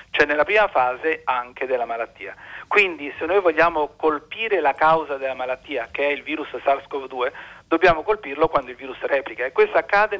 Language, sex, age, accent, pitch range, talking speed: Italian, male, 50-69, native, 140-200 Hz, 175 wpm